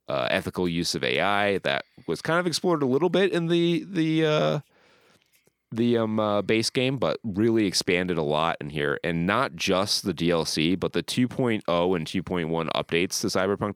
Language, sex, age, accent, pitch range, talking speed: English, male, 30-49, American, 80-110 Hz, 185 wpm